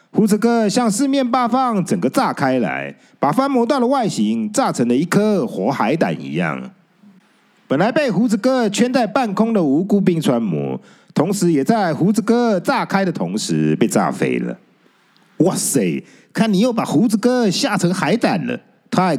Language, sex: Chinese, male